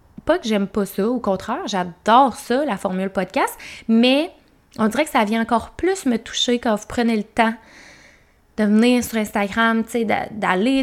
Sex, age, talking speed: female, 20-39, 175 wpm